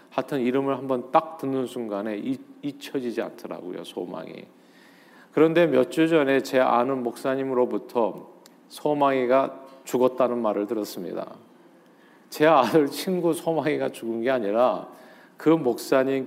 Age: 40-59